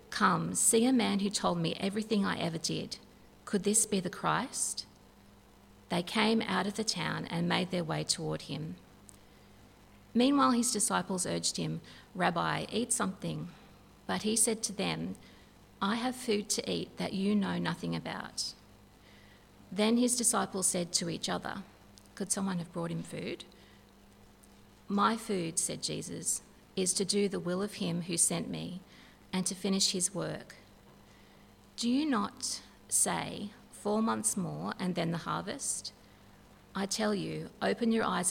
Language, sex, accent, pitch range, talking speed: English, female, Australian, 150-205 Hz, 155 wpm